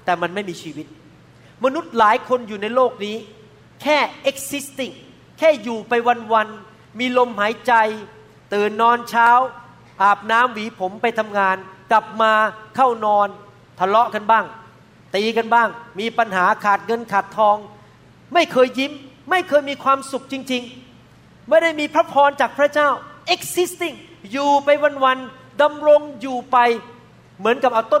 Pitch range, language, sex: 195-265 Hz, Thai, male